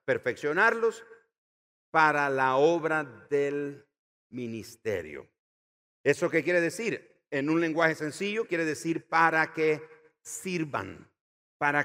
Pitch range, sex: 140-205 Hz, male